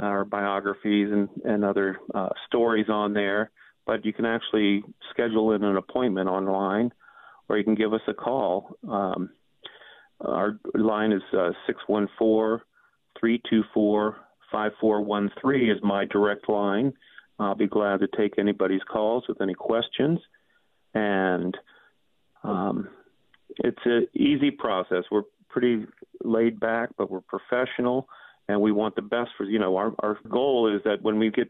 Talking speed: 140 wpm